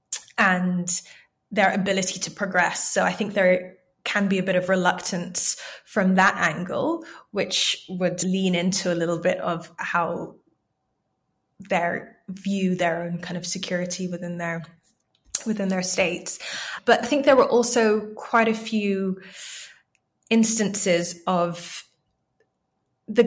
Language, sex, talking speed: English, female, 130 wpm